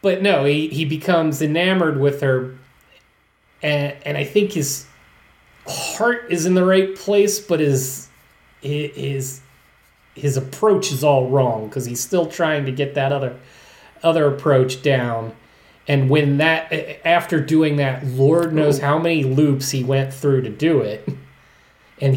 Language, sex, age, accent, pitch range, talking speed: English, male, 30-49, American, 130-160 Hz, 150 wpm